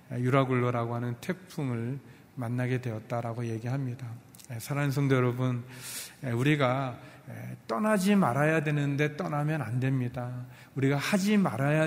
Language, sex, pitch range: Korean, male, 125-155 Hz